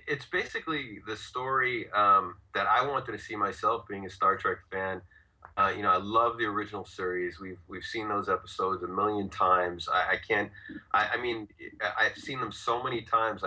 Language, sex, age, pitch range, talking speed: English, male, 30-49, 90-105 Hz, 195 wpm